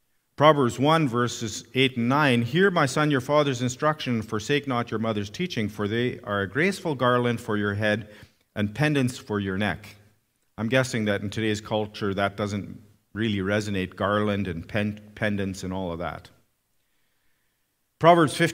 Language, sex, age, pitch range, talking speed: English, male, 50-69, 110-160 Hz, 165 wpm